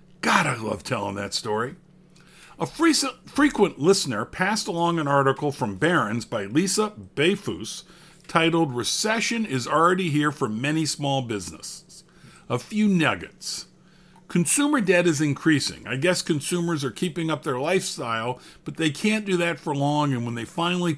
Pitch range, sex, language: 140-180 Hz, male, English